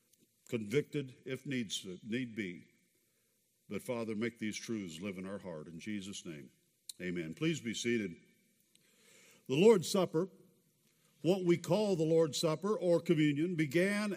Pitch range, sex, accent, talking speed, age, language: 165-210 Hz, male, American, 145 wpm, 60-79, English